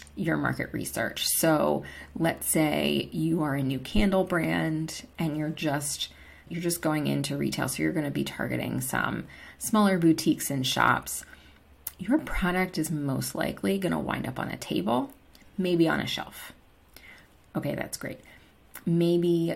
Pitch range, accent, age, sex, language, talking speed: 140-190 Hz, American, 30-49, female, English, 155 wpm